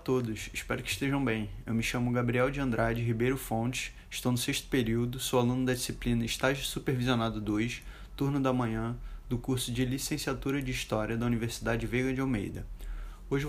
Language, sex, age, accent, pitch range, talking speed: Portuguese, male, 20-39, Brazilian, 115-130 Hz, 180 wpm